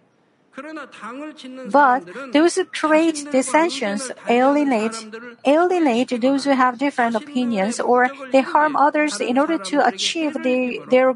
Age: 50-69